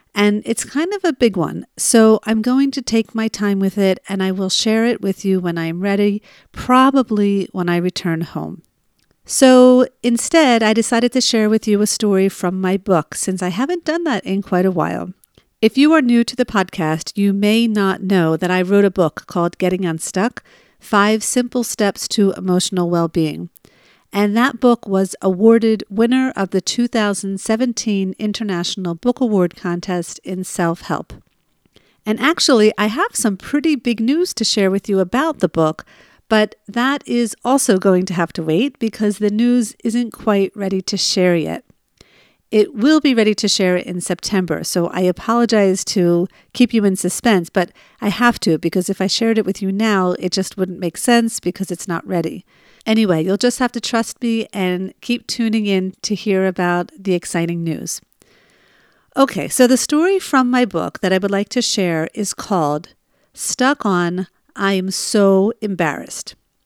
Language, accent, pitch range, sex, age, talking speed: English, American, 185-230 Hz, female, 50-69, 180 wpm